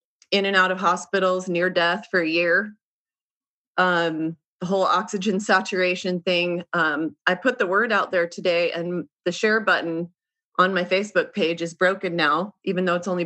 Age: 30-49